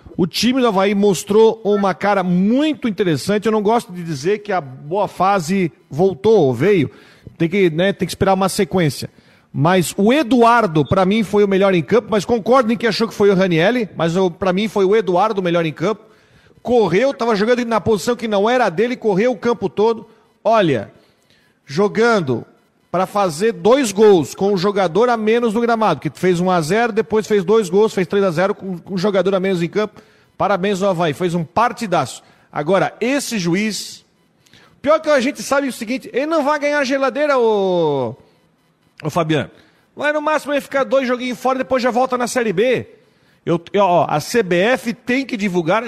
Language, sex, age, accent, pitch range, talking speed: Portuguese, male, 40-59, Brazilian, 185-235 Hz, 200 wpm